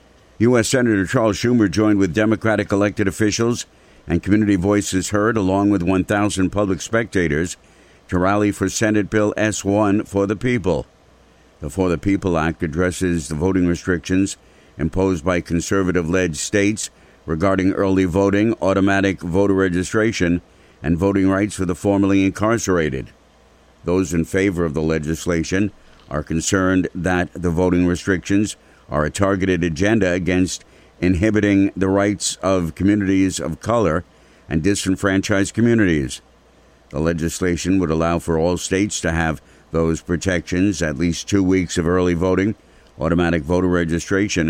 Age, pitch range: 60-79, 85-100 Hz